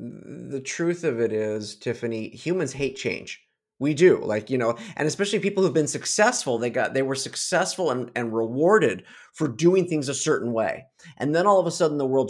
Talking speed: 205 wpm